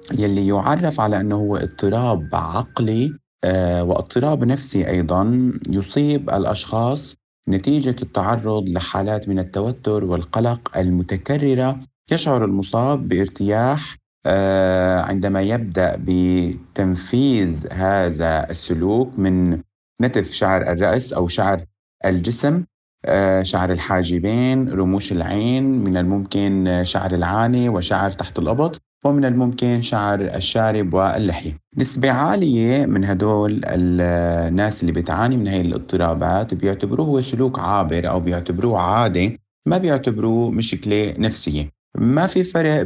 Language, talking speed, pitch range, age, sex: Arabic, 105 wpm, 90-120 Hz, 30-49, male